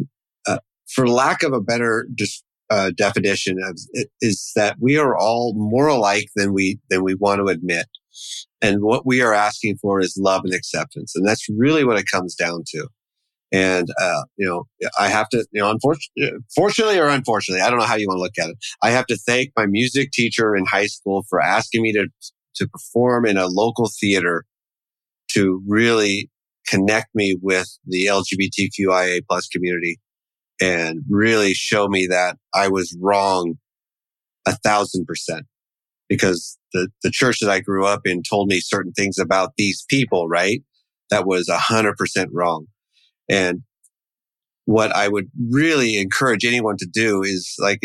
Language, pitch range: English, 95-115 Hz